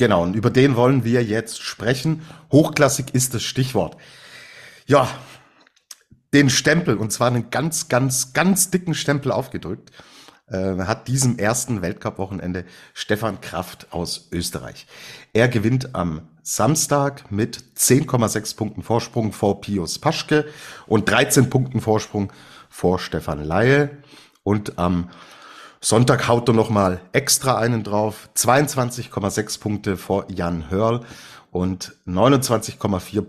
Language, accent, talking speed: German, German, 125 wpm